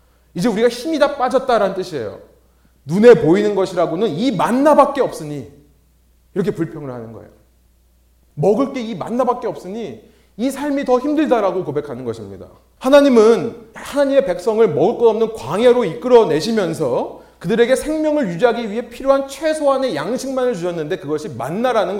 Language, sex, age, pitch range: Korean, male, 30-49, 155-255 Hz